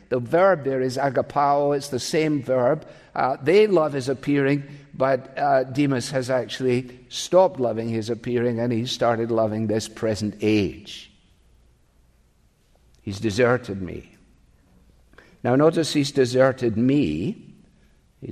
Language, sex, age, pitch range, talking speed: English, male, 50-69, 125-160 Hz, 130 wpm